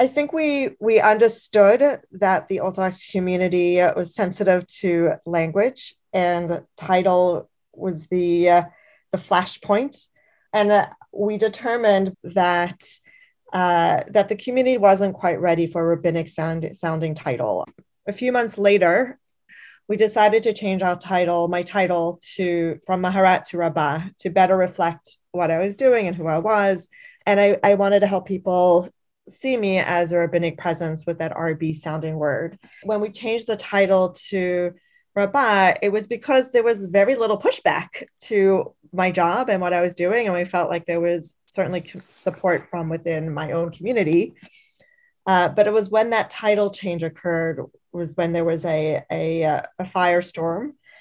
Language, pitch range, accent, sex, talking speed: English, 175-210 Hz, American, female, 160 wpm